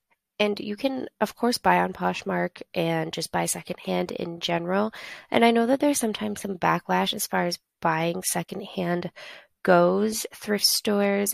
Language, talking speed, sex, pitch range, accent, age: English, 160 wpm, female, 175-215 Hz, American, 20-39